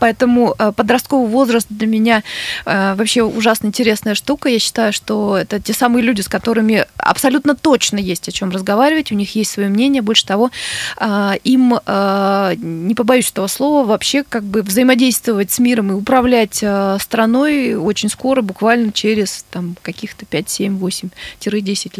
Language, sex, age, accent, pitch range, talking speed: Russian, female, 20-39, native, 195-245 Hz, 145 wpm